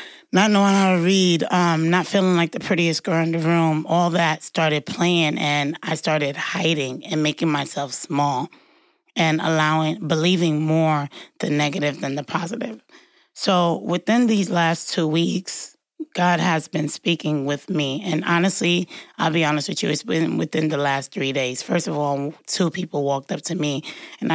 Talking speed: 175 wpm